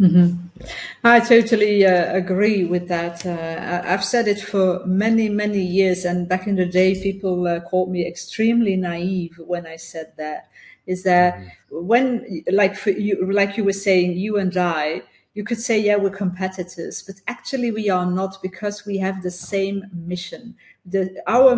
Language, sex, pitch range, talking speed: Dutch, female, 180-225 Hz, 160 wpm